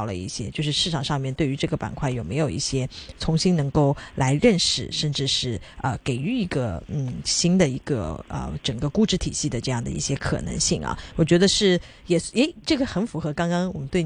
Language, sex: Chinese, female